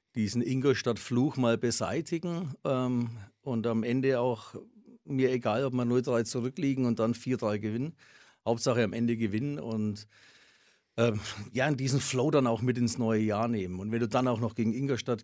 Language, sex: German, male